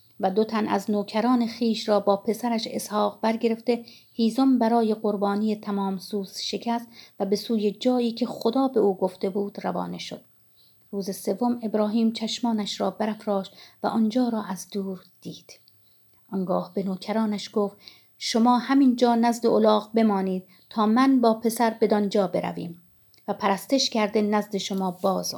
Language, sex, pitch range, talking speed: Persian, female, 190-225 Hz, 150 wpm